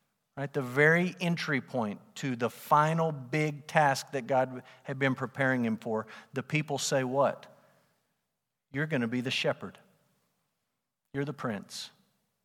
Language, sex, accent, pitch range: English, male, American, 120-145 Hz